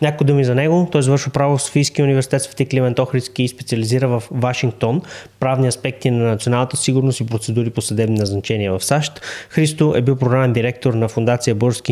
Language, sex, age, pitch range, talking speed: Bulgarian, male, 20-39, 115-135 Hz, 185 wpm